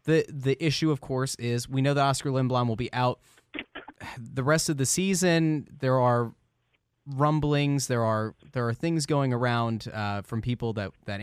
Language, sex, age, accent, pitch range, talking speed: English, male, 20-39, American, 110-145 Hz, 180 wpm